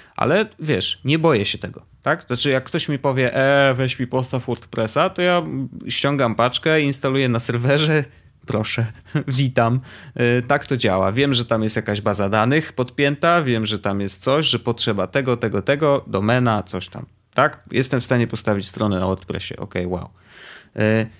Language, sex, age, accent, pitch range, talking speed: Polish, male, 30-49, native, 105-125 Hz, 175 wpm